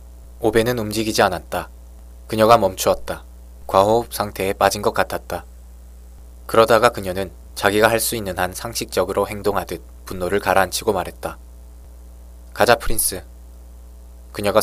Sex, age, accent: male, 20-39, native